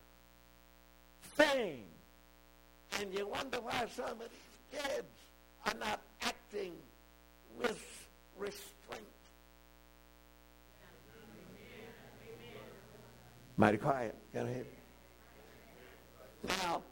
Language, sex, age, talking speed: English, male, 60-79, 65 wpm